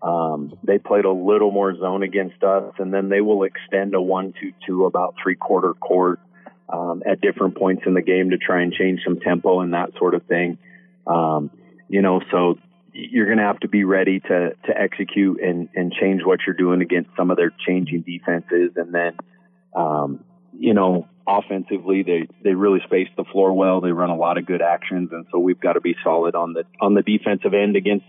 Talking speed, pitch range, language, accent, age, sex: 210 wpm, 90-110 Hz, English, American, 30-49, male